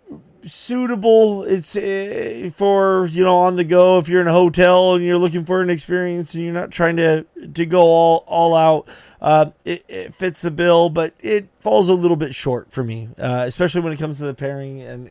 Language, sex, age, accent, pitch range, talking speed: English, male, 30-49, American, 125-175 Hz, 210 wpm